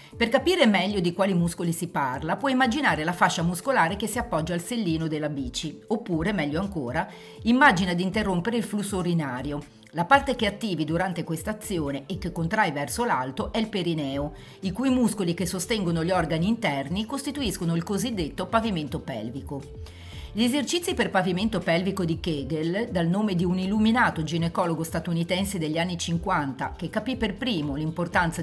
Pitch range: 165-215 Hz